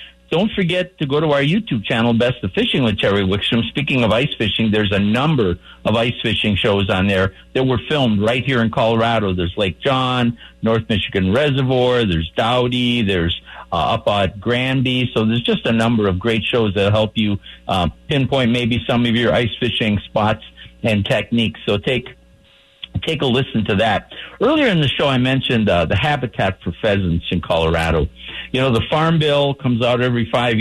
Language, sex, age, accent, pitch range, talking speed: English, male, 50-69, American, 100-130 Hz, 190 wpm